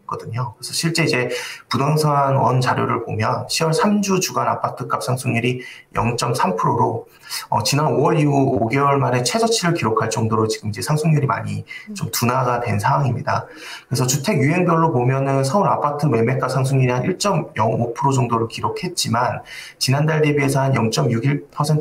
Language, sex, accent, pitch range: Korean, male, native, 115-150 Hz